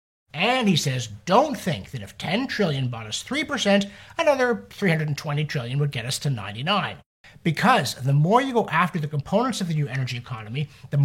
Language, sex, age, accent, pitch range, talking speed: English, male, 50-69, American, 120-185 Hz, 185 wpm